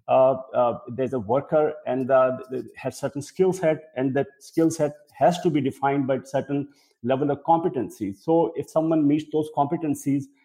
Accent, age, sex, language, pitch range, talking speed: Indian, 50-69, male, English, 130-160 Hz, 170 wpm